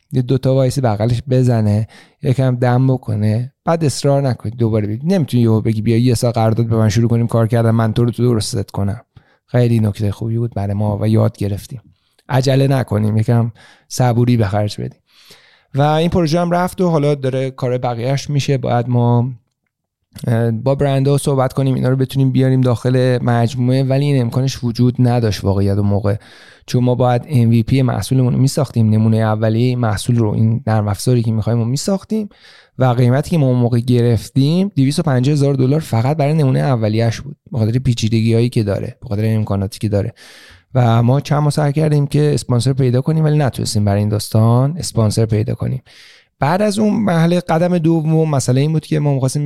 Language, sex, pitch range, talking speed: Persian, male, 115-140 Hz, 185 wpm